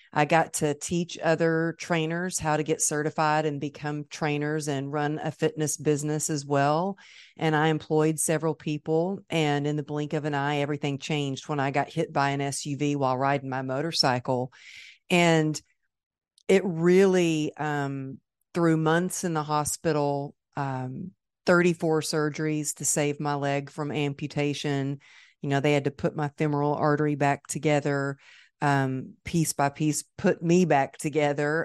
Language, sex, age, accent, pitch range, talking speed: English, female, 40-59, American, 145-160 Hz, 155 wpm